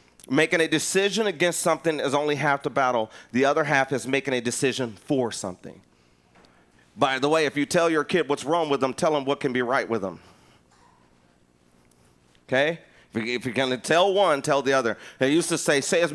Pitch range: 115-160 Hz